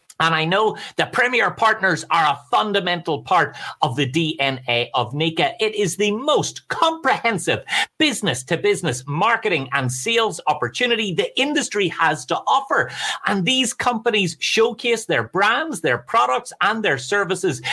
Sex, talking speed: male, 140 wpm